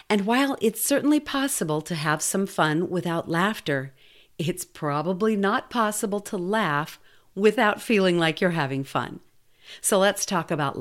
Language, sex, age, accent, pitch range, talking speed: English, female, 50-69, American, 155-215 Hz, 150 wpm